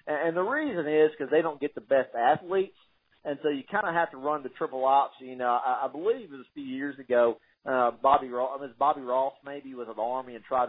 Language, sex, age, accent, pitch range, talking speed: English, male, 40-59, American, 125-155 Hz, 245 wpm